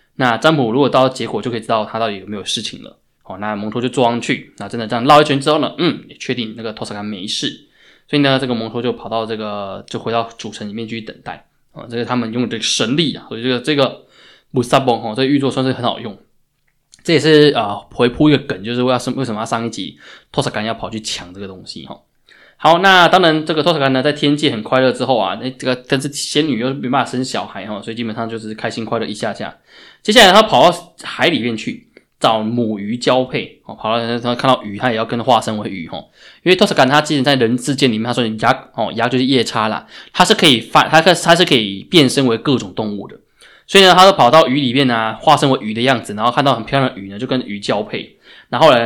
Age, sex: 20-39, male